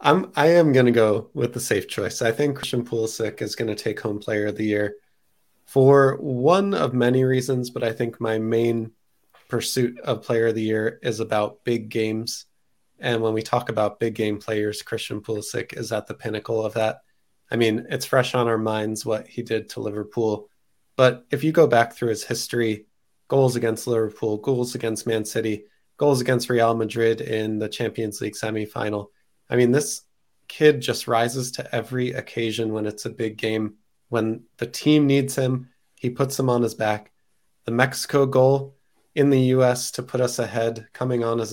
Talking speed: 190 wpm